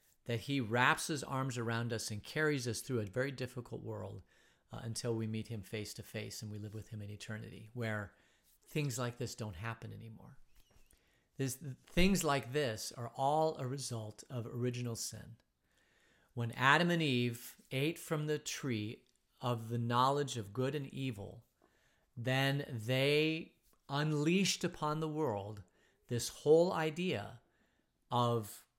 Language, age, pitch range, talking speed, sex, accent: English, 40-59, 110-145 Hz, 150 wpm, male, American